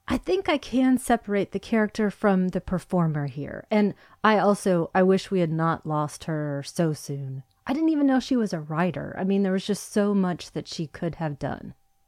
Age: 30-49